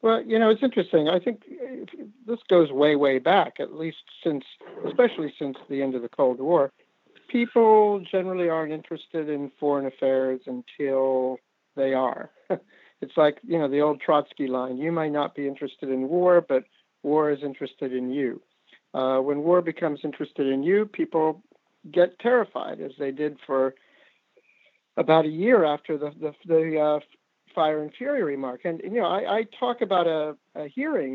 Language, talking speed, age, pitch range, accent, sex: English, 175 wpm, 60-79, 140-180 Hz, American, male